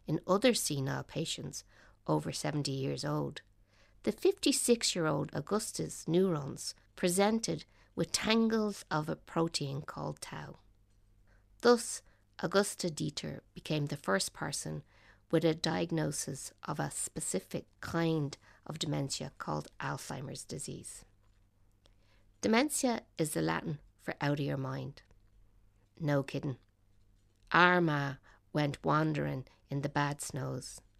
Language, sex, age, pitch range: English, female, 60-79, 100-170 Hz